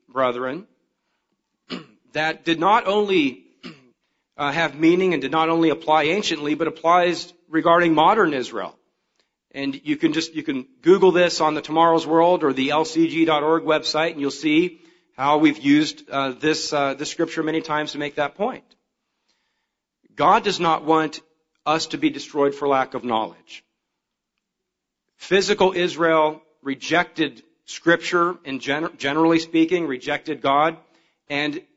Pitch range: 140-170 Hz